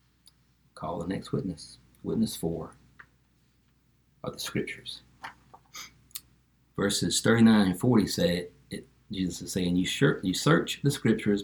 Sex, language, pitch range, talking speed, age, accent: male, English, 85-115 Hz, 110 wpm, 50-69, American